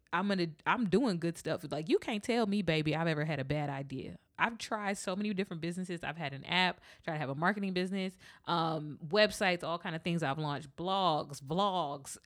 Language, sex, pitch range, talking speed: English, female, 160-205 Hz, 220 wpm